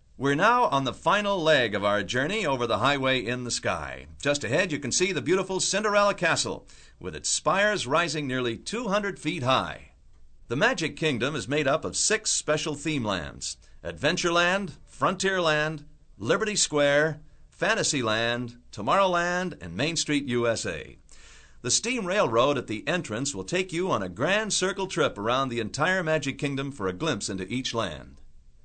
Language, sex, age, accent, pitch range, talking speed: English, male, 50-69, American, 115-170 Hz, 165 wpm